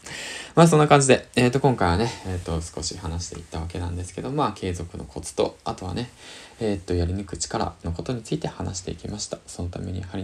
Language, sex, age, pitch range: Japanese, male, 20-39, 85-115 Hz